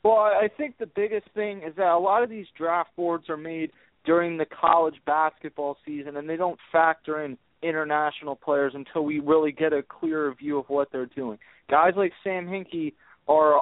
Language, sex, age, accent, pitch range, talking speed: English, male, 20-39, American, 155-180 Hz, 195 wpm